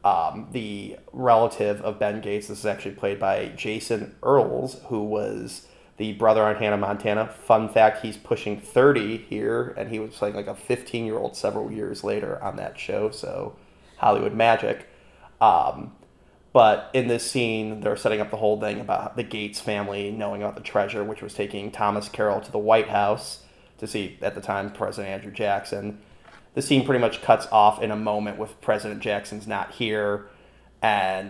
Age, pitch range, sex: 30-49, 105-115 Hz, male